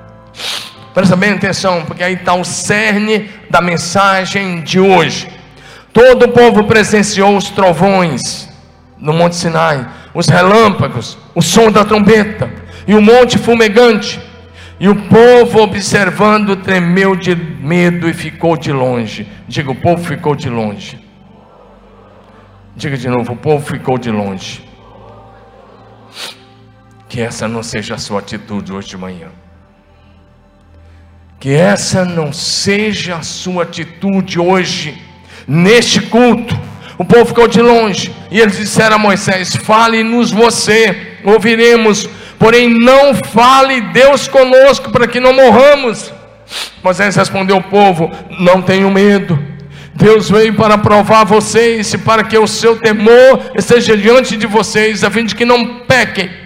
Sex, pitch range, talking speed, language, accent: male, 140-220 Hz, 135 wpm, Portuguese, Brazilian